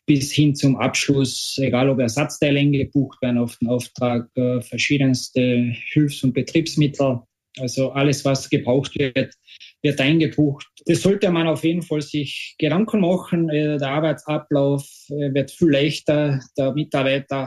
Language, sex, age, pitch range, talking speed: German, male, 20-39, 130-150 Hz, 135 wpm